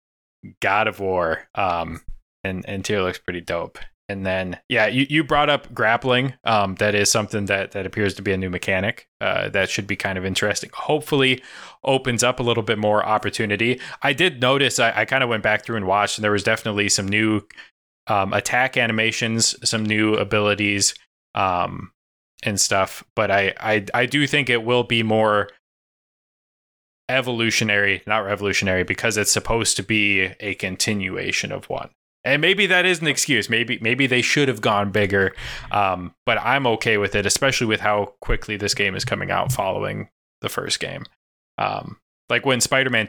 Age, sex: 20-39, male